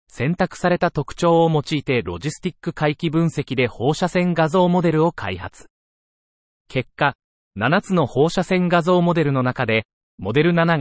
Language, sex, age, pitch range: Japanese, male, 40-59, 120-170 Hz